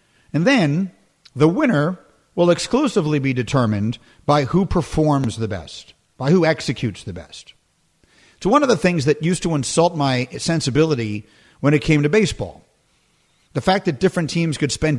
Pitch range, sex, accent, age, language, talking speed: 120-165 Hz, male, American, 50-69, English, 165 wpm